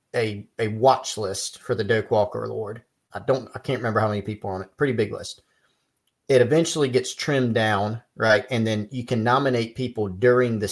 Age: 40-59